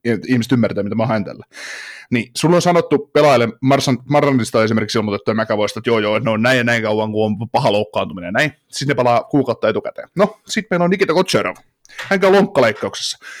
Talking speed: 210 wpm